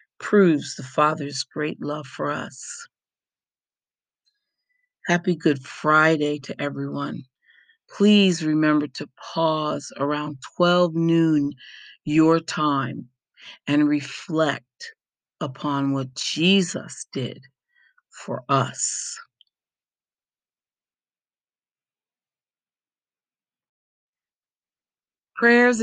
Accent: American